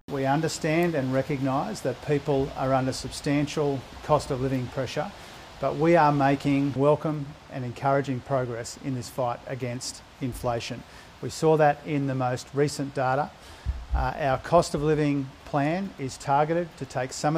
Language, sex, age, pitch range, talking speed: Tamil, male, 50-69, 165-245 Hz, 155 wpm